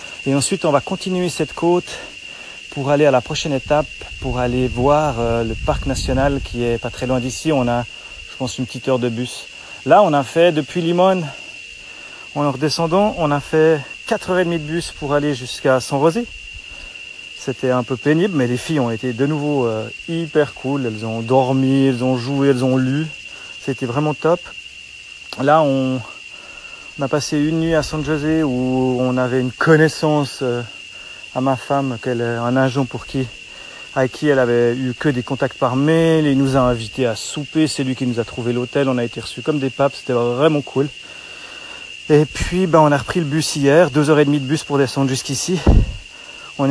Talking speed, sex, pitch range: 200 wpm, male, 125-150 Hz